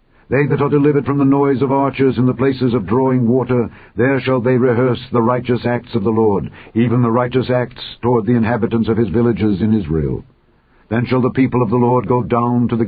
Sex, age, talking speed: male, 60-79, 225 wpm